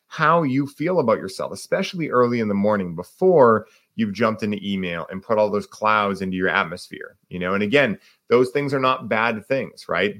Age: 30-49